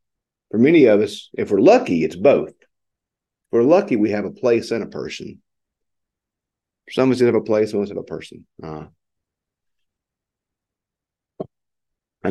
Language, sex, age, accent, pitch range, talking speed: English, male, 50-69, American, 90-110 Hz, 160 wpm